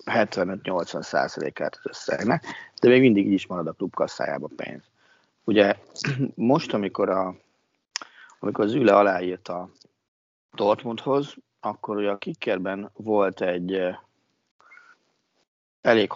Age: 30-49